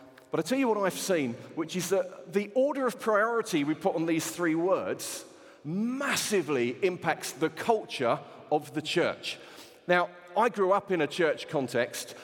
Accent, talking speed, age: British, 170 wpm, 40-59